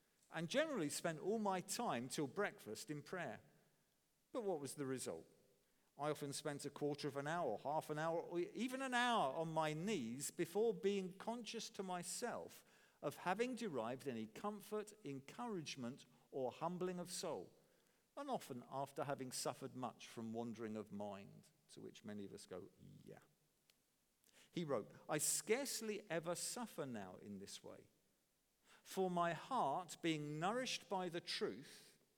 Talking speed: 155 wpm